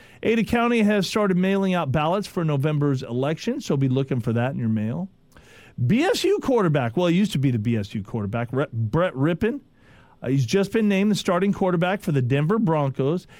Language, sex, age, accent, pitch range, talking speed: English, male, 40-59, American, 130-180 Hz, 185 wpm